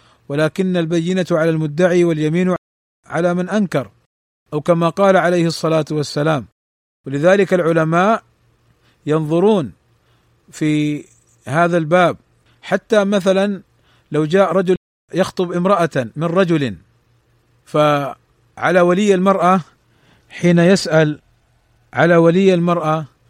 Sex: male